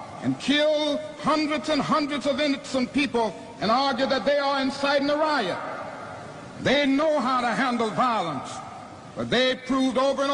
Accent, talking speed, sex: American, 155 wpm, male